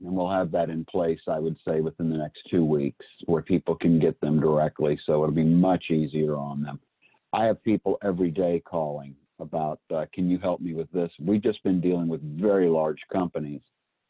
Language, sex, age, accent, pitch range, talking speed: English, male, 50-69, American, 85-105 Hz, 210 wpm